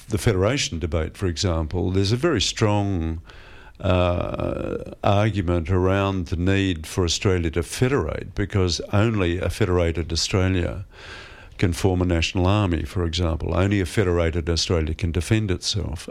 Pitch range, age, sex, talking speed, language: 85-100 Hz, 50-69, male, 140 wpm, English